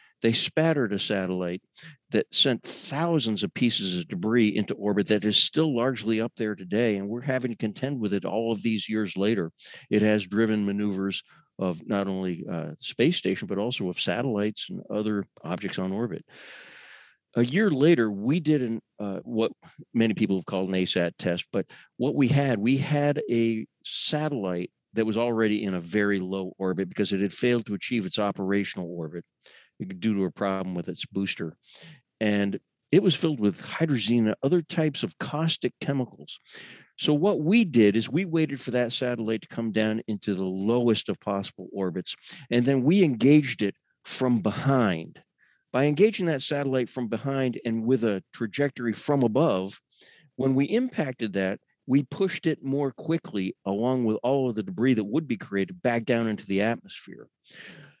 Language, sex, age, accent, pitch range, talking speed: English, male, 50-69, American, 100-135 Hz, 180 wpm